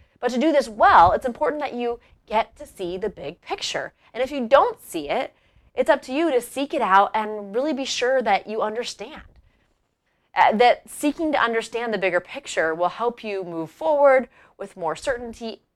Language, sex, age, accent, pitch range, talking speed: English, female, 30-49, American, 180-255 Hz, 200 wpm